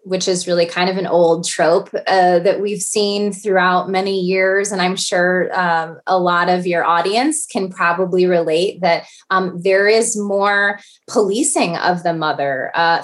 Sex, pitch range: female, 170-205 Hz